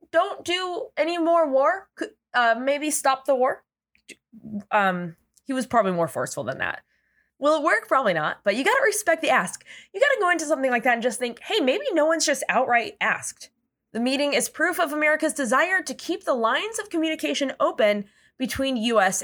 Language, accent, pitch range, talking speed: English, American, 220-310 Hz, 195 wpm